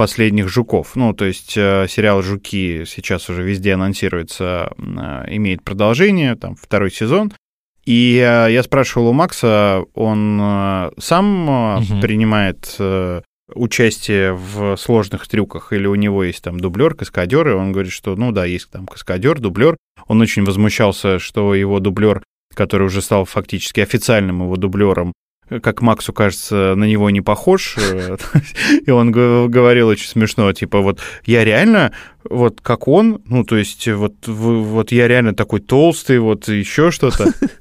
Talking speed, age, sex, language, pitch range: 150 wpm, 20-39, male, Russian, 95-120 Hz